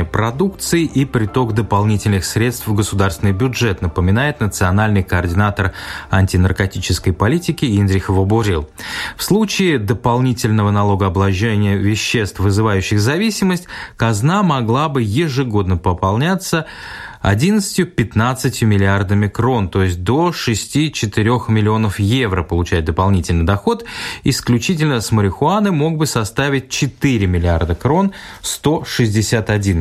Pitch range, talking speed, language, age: 95-130 Hz, 100 wpm, Russian, 20-39